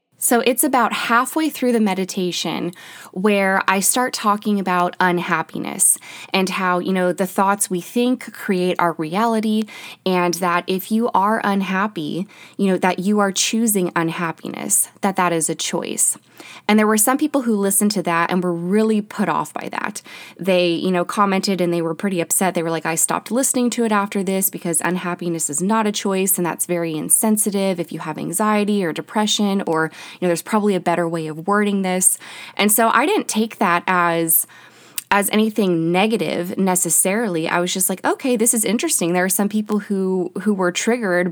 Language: English